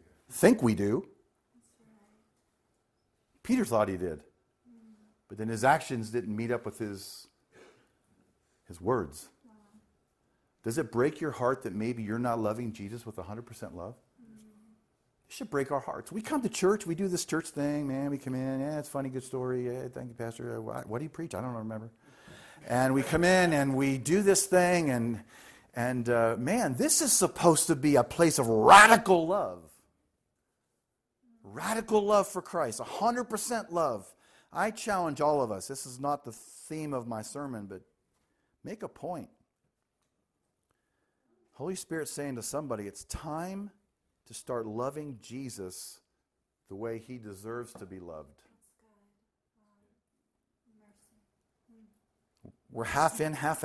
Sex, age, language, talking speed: male, 50-69, English, 155 wpm